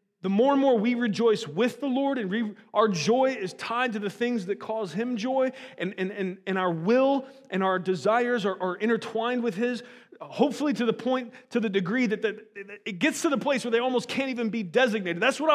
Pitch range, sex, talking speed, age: 210-270 Hz, male, 230 wpm, 30-49